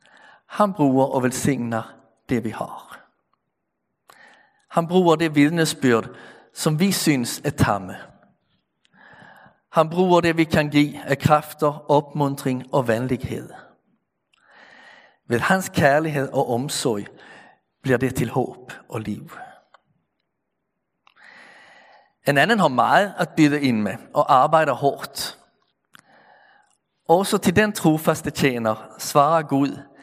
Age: 50-69